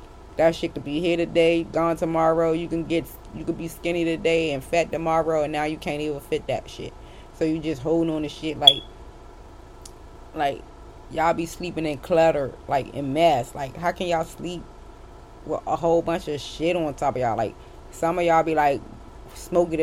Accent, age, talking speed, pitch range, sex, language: American, 20-39, 200 wpm, 150-170 Hz, female, English